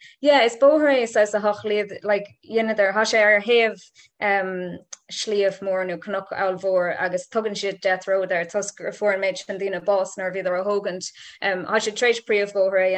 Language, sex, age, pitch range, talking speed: English, female, 20-39, 180-200 Hz, 170 wpm